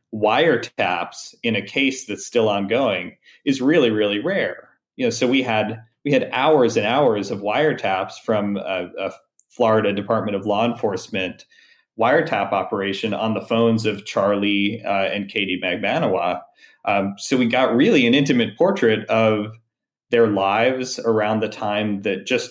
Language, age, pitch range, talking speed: English, 30-49, 100-120 Hz, 155 wpm